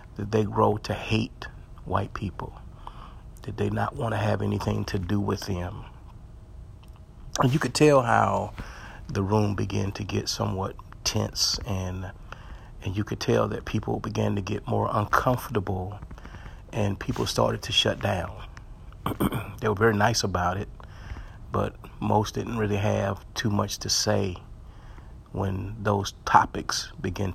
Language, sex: English, male